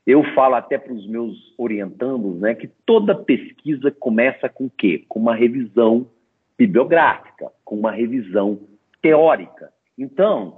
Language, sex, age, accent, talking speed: Portuguese, male, 50-69, Brazilian, 135 wpm